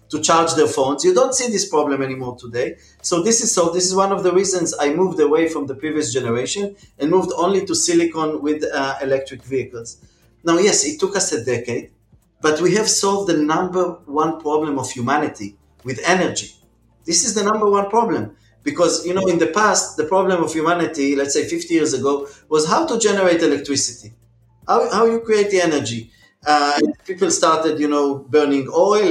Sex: male